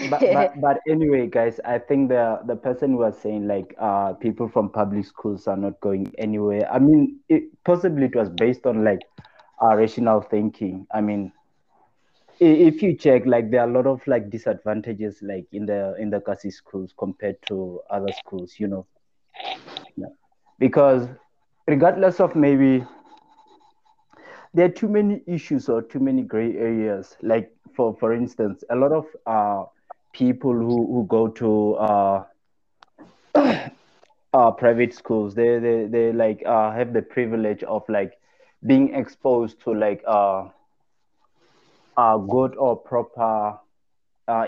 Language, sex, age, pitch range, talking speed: English, male, 20-39, 105-140 Hz, 150 wpm